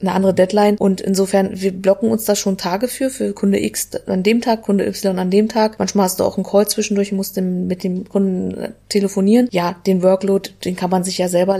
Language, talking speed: German, 235 wpm